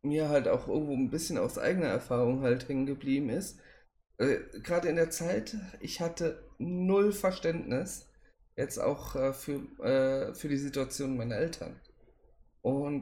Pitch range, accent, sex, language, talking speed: 125-165 Hz, German, male, German, 150 wpm